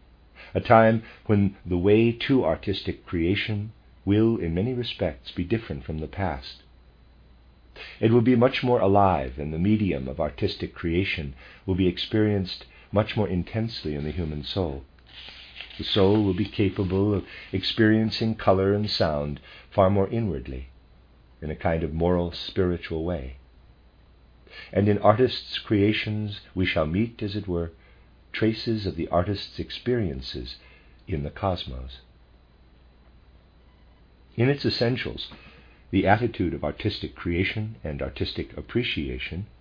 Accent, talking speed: American, 135 wpm